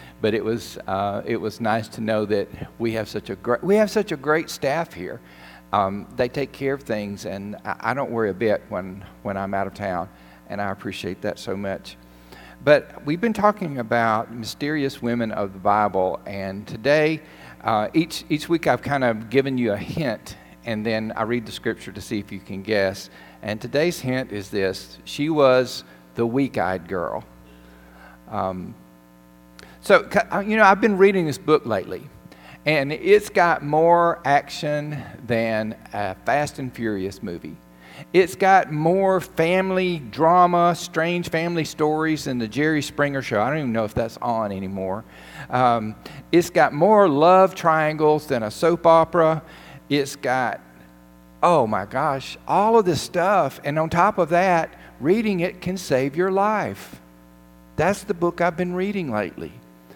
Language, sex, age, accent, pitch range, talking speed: English, male, 50-69, American, 95-160 Hz, 170 wpm